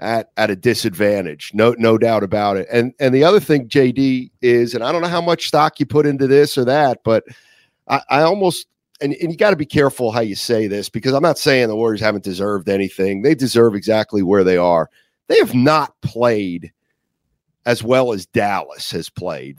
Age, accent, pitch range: 40-59, American, 105-140 Hz